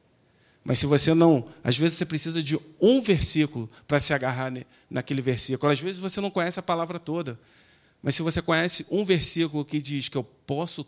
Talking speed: 200 wpm